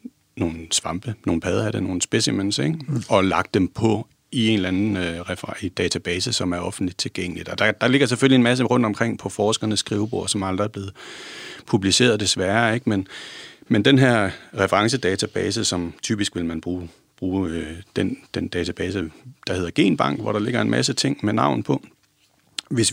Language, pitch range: Danish, 95-115 Hz